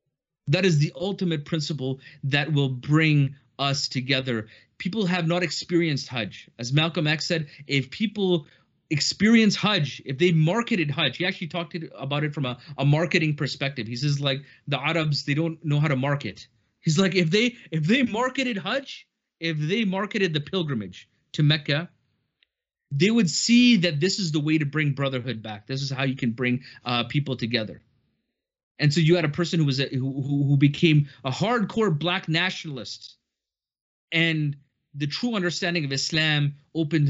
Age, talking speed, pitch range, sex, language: 30-49, 170 wpm, 135-175 Hz, male, English